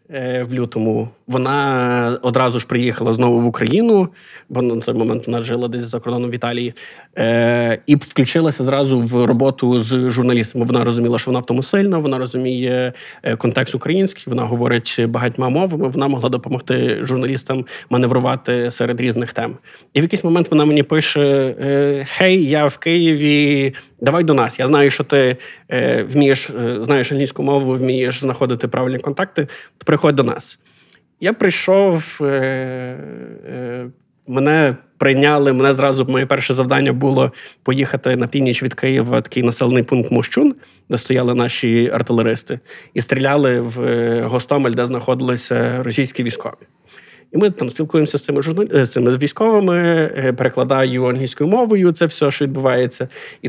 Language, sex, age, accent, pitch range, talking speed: Ukrainian, male, 20-39, native, 125-150 Hz, 140 wpm